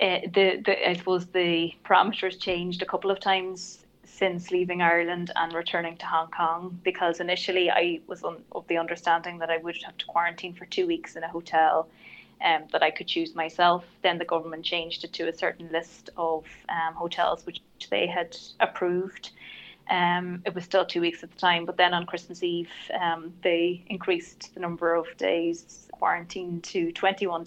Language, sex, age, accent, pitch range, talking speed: English, female, 20-39, Irish, 170-185 Hz, 190 wpm